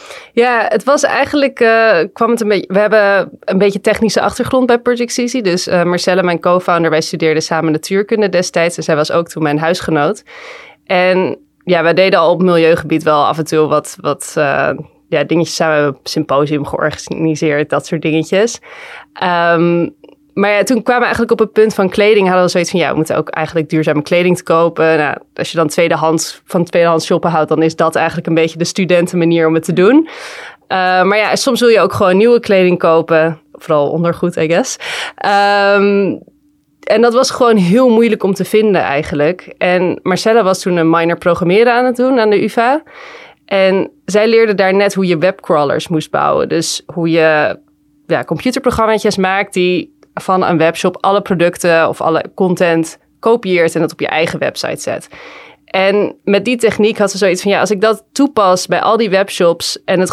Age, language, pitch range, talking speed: 20-39, Dutch, 165-215 Hz, 195 wpm